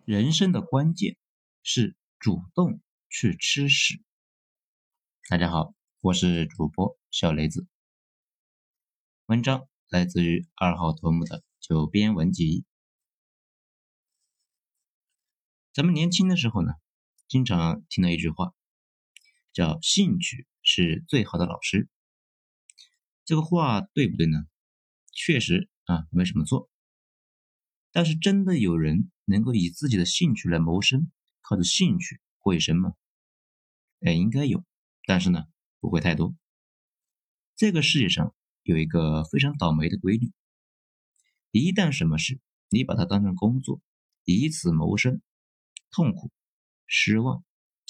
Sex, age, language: male, 50-69, Chinese